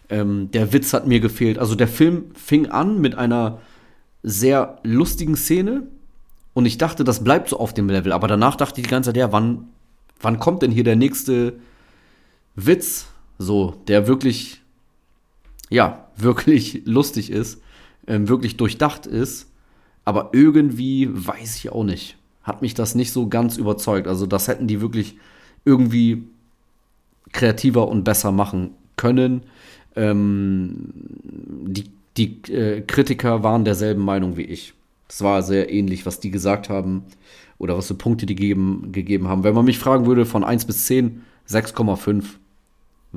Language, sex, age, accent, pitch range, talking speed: German, male, 30-49, German, 100-125 Hz, 150 wpm